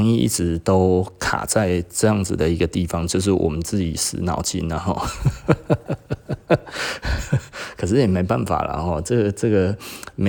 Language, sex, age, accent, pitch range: Chinese, male, 20-39, native, 85-105 Hz